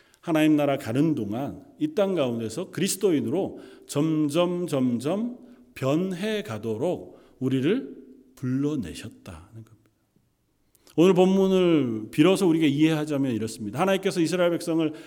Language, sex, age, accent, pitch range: Korean, male, 40-59, native, 120-185 Hz